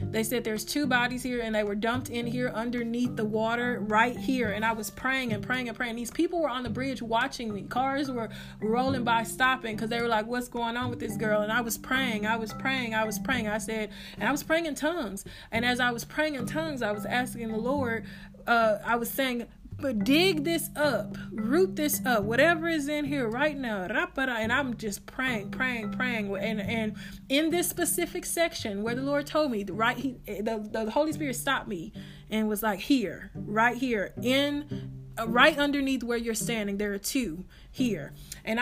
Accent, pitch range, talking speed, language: American, 215-265 Hz, 220 wpm, English